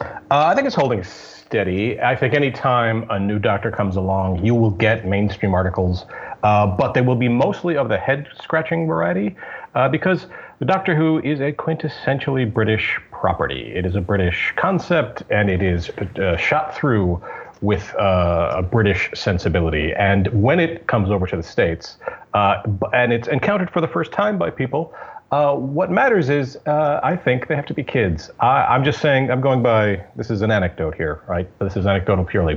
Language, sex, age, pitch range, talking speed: English, male, 40-59, 95-140 Hz, 190 wpm